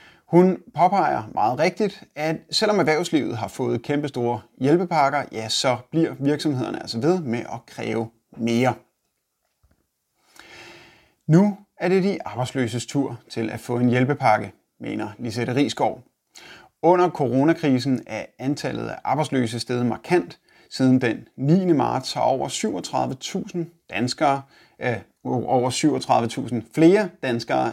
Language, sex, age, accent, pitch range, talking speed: Danish, male, 30-49, native, 120-165 Hz, 120 wpm